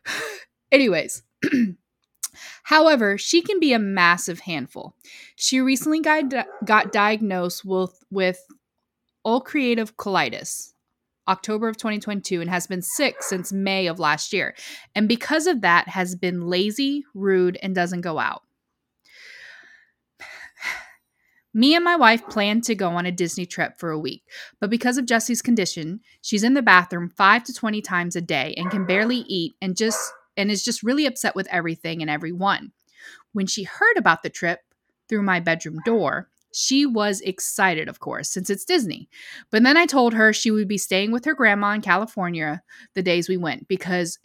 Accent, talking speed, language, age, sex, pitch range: American, 165 wpm, English, 20-39, female, 180-240 Hz